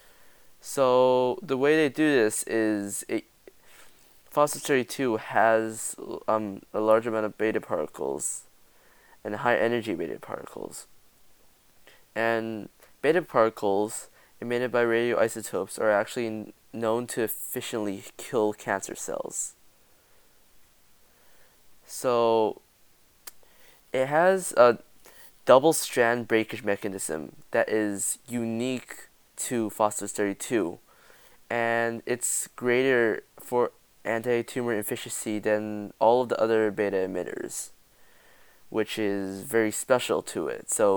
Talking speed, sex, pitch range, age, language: 100 wpm, male, 105-120 Hz, 20-39, English